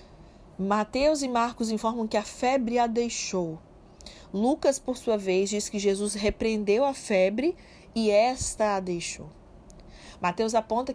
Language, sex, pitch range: Portuguese, female, 185-235 Hz